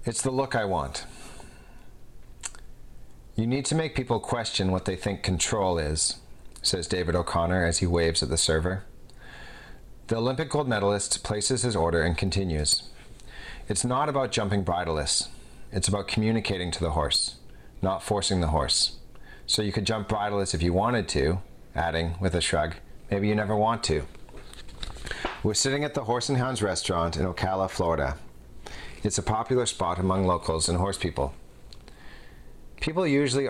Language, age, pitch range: English, 40-59, 80-105 Hz